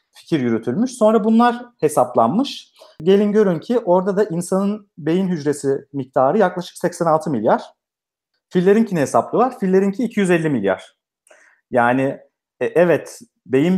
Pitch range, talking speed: 130-185 Hz, 120 wpm